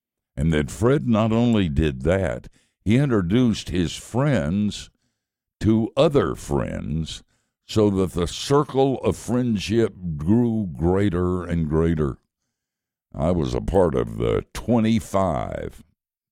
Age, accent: 60-79, American